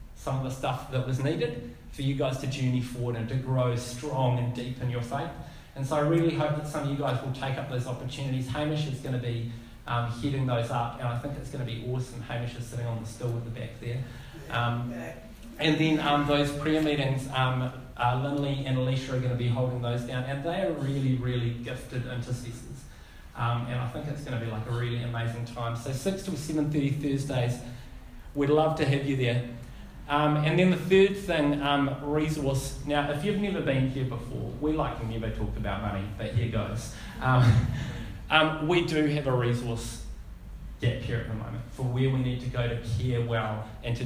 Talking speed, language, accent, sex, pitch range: 220 wpm, English, Australian, male, 120-145 Hz